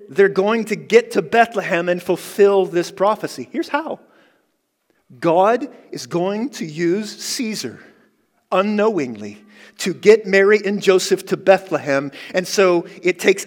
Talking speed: 135 wpm